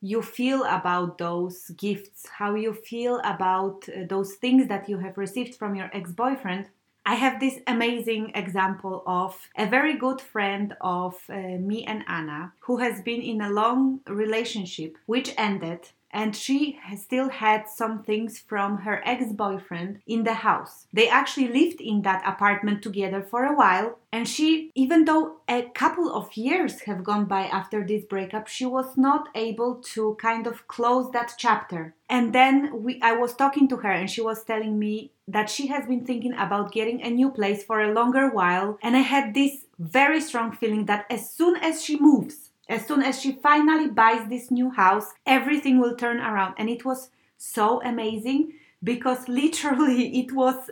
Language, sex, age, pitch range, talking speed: English, female, 20-39, 205-260 Hz, 175 wpm